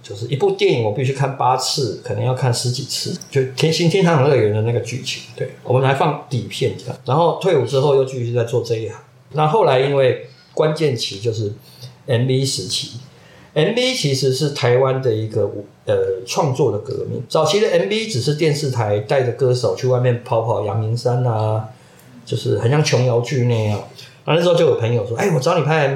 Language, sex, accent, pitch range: Chinese, male, native, 125-160 Hz